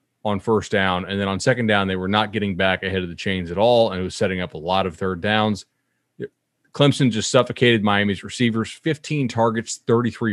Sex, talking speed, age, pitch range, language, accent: male, 215 wpm, 30-49, 100-130 Hz, English, American